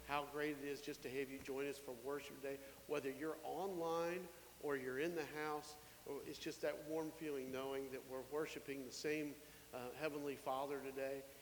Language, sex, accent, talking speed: English, male, American, 195 wpm